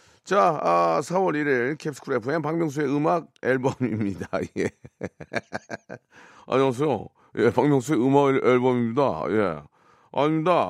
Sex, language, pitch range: male, Korean, 110-155 Hz